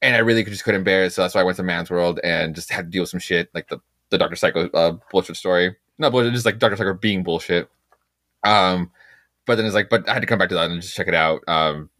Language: English